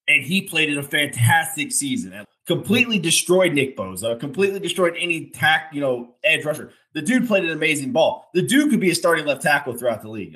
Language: English